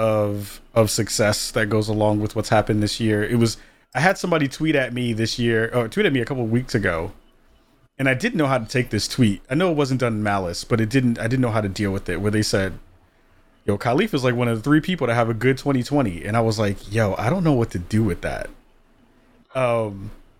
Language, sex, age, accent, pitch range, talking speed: English, male, 30-49, American, 105-130 Hz, 260 wpm